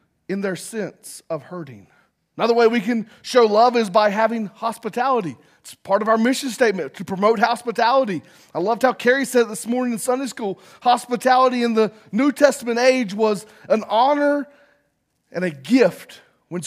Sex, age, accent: male, 30-49, American